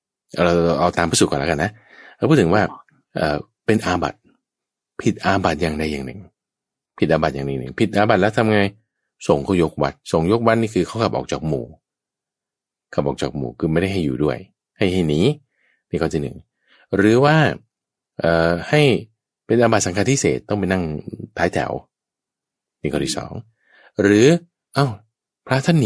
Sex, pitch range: male, 80-115 Hz